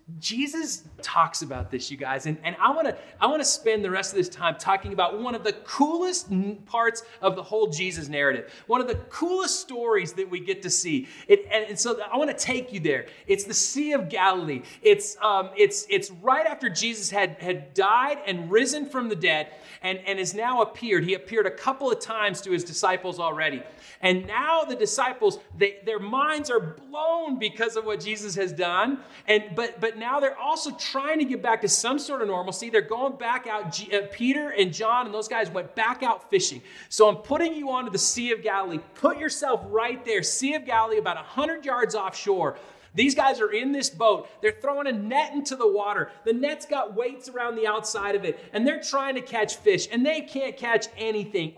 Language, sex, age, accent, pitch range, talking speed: English, male, 30-49, American, 195-280 Hz, 215 wpm